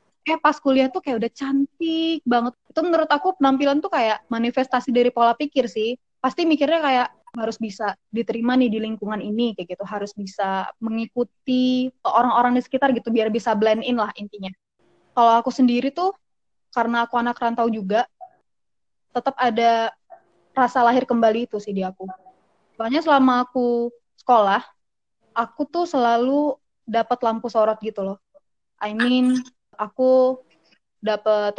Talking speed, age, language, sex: 150 wpm, 20-39, Indonesian, female